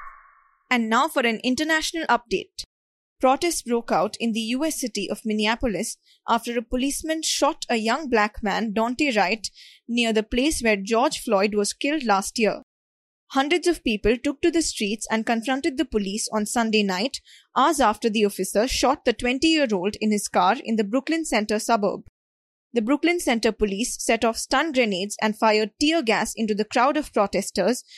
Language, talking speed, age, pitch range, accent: English, 175 wpm, 20-39, 215-270 Hz, Indian